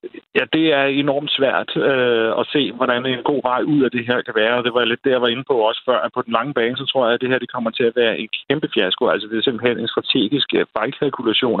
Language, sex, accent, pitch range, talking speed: Danish, male, native, 115-140 Hz, 285 wpm